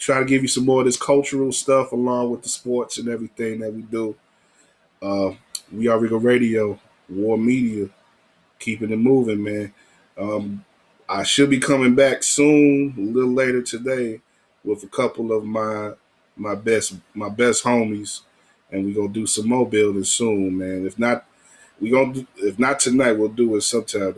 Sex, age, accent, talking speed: male, 20-39, American, 180 wpm